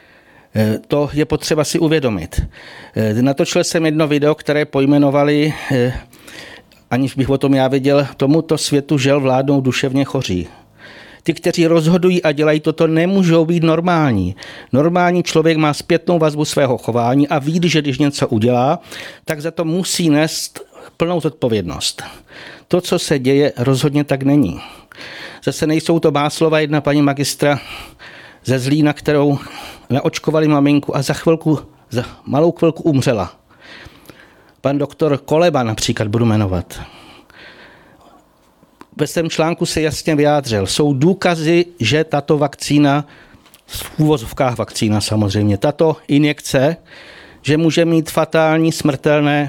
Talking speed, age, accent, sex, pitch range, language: 130 wpm, 50-69, native, male, 135-160 Hz, Czech